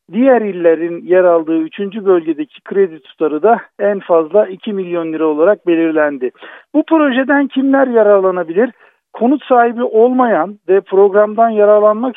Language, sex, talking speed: Turkish, male, 130 wpm